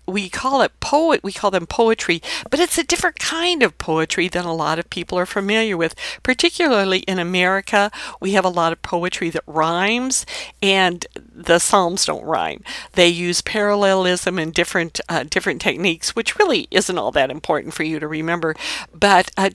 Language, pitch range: English, 175-230 Hz